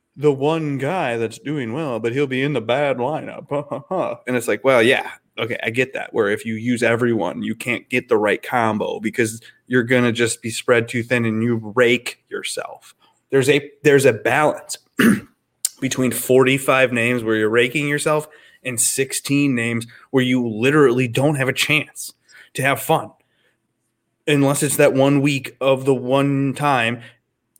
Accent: American